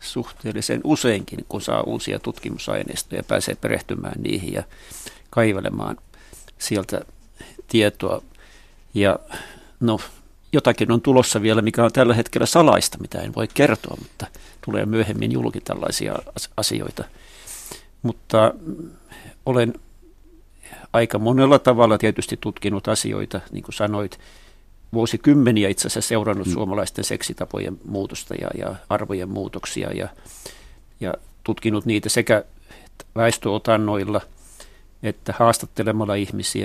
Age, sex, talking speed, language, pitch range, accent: 50-69, male, 105 wpm, Finnish, 95-115 Hz, native